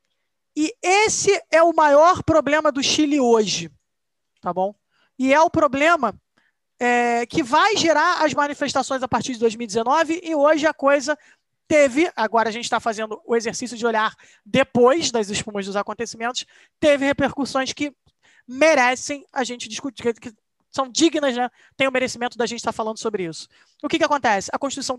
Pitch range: 235-300 Hz